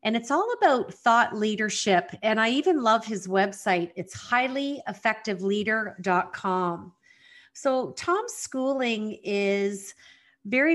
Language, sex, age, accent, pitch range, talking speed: English, female, 40-59, American, 190-230 Hz, 105 wpm